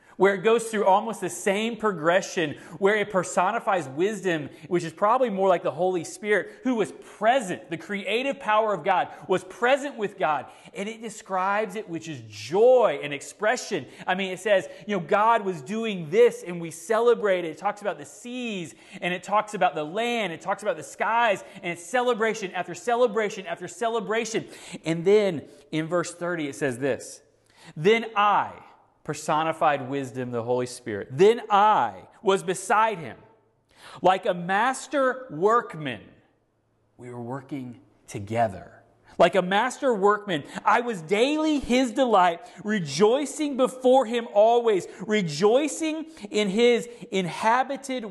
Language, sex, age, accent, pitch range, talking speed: English, male, 30-49, American, 145-220 Hz, 150 wpm